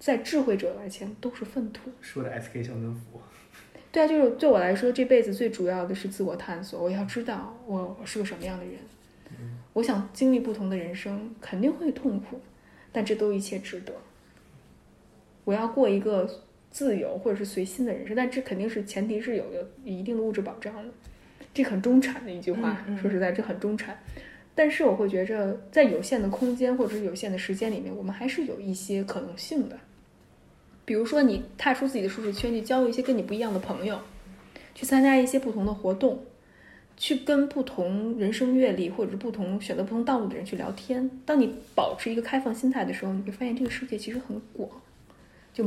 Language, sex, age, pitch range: Chinese, female, 10-29, 195-255 Hz